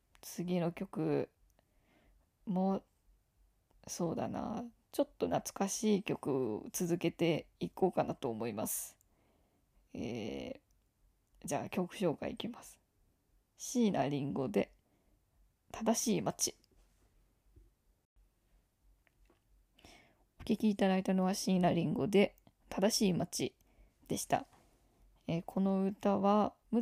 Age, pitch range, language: 20-39, 175-220 Hz, Japanese